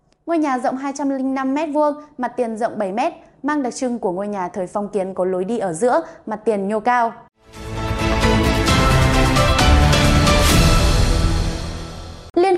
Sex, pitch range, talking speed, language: female, 210-280 Hz, 130 wpm, Vietnamese